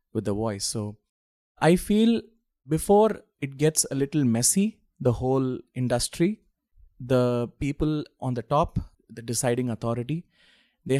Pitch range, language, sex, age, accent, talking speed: 120-155 Hz, English, male, 30-49, Indian, 130 wpm